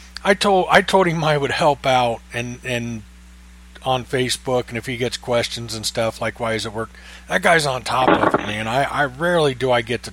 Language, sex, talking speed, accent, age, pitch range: English, male, 230 wpm, American, 40-59, 110-160 Hz